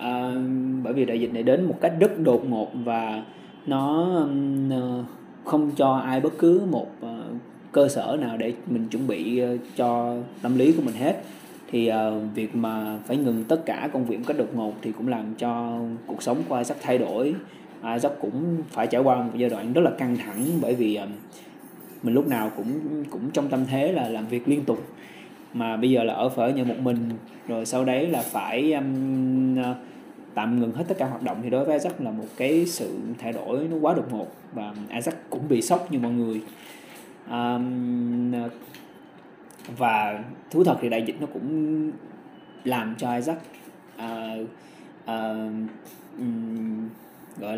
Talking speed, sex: 175 wpm, male